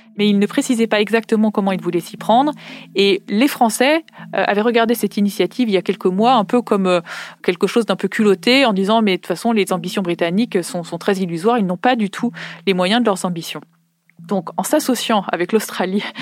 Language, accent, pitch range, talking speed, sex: French, French, 180-225 Hz, 225 wpm, female